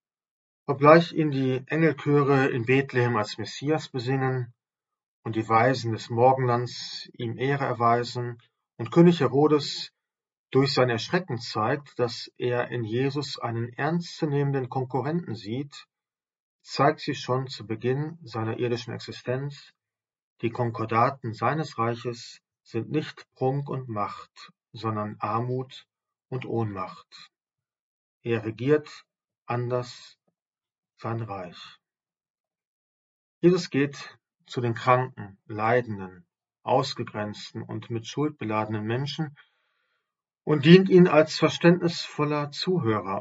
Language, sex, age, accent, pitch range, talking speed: German, male, 40-59, German, 115-150 Hz, 105 wpm